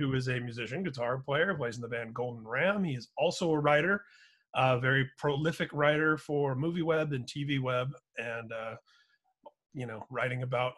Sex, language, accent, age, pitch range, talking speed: male, English, American, 30-49, 125-155 Hz, 185 wpm